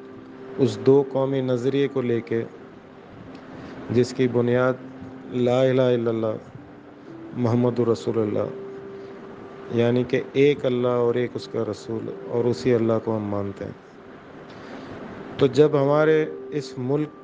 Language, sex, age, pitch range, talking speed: Urdu, male, 40-59, 115-135 Hz, 130 wpm